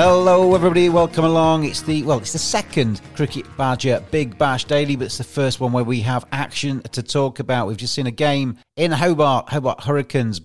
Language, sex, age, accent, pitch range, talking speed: English, male, 40-59, British, 120-155 Hz, 205 wpm